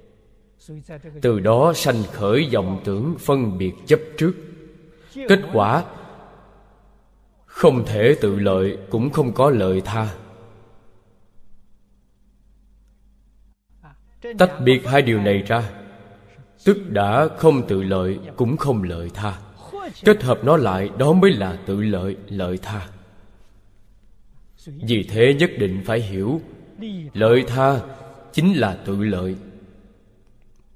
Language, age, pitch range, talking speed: Vietnamese, 20-39, 100-140 Hz, 115 wpm